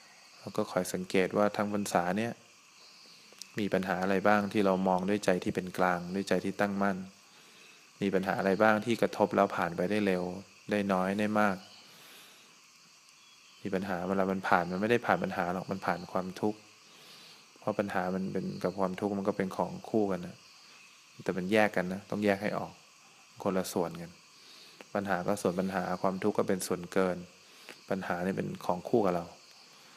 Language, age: English, 20-39